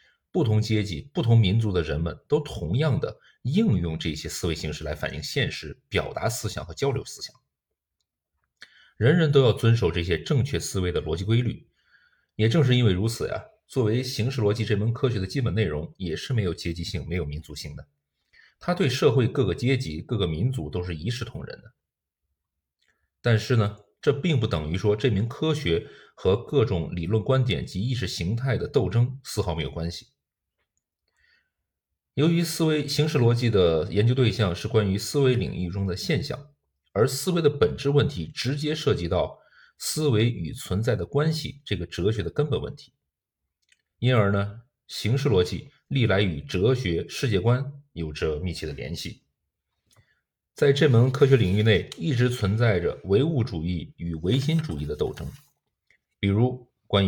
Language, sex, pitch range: Chinese, male, 85-130 Hz